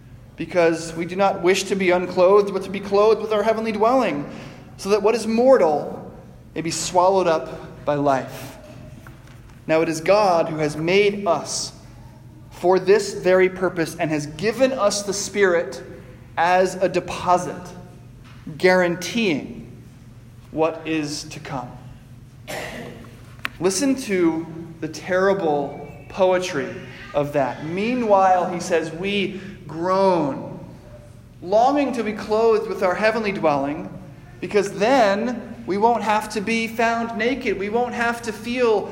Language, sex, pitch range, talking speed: English, male, 150-205 Hz, 135 wpm